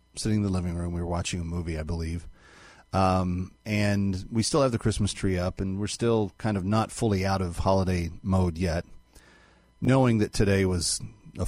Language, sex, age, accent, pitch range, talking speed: English, male, 40-59, American, 90-110 Hz, 200 wpm